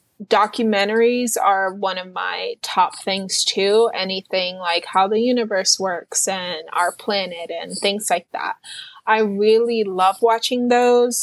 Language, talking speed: English, 140 wpm